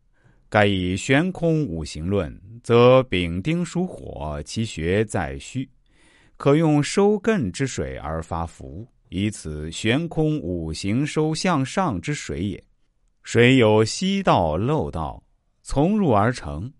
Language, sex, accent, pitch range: Chinese, male, native, 85-135 Hz